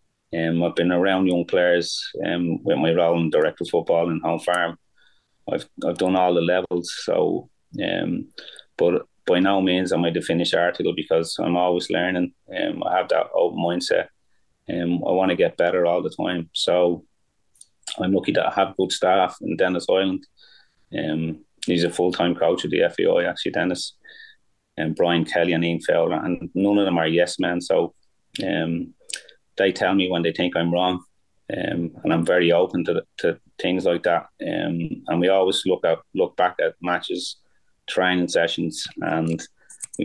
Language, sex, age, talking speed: English, male, 30-49, 185 wpm